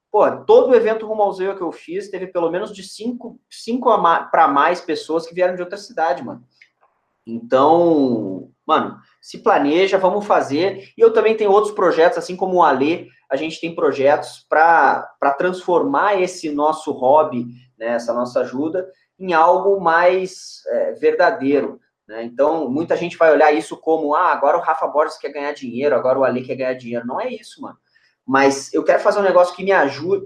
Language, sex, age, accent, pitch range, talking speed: Portuguese, male, 20-39, Brazilian, 155-215 Hz, 185 wpm